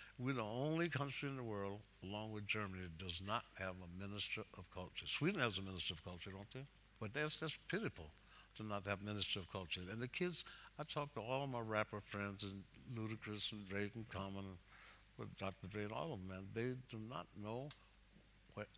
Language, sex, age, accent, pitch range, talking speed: English, male, 60-79, American, 95-115 Hz, 210 wpm